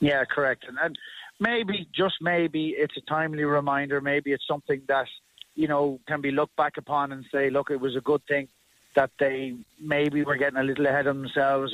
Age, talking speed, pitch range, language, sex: 30-49, 205 wpm, 135-155 Hz, English, male